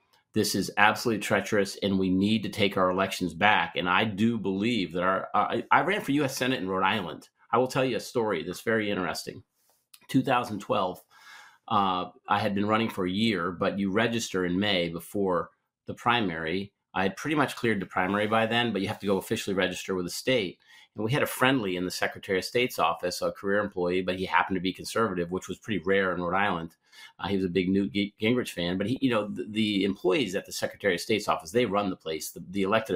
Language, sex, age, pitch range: English, male, 40-59, 90-110 Hz